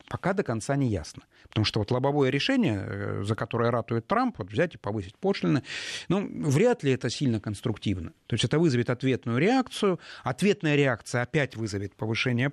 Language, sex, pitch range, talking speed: Russian, male, 110-150 Hz, 165 wpm